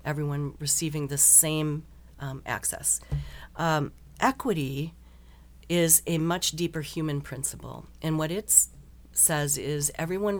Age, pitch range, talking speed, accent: 40-59, 135-165 Hz, 115 wpm, American